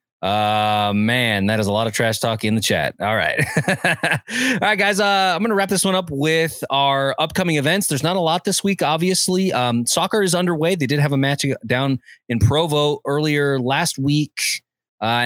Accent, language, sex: American, English, male